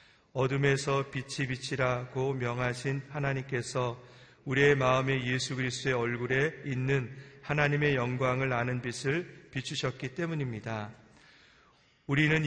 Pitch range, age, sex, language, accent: 125-140 Hz, 40-59, male, Korean, native